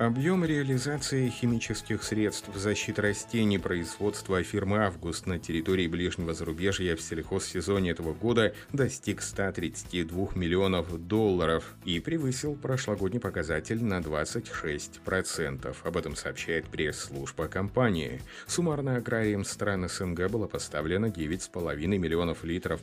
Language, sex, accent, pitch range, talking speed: Russian, male, native, 85-115 Hz, 110 wpm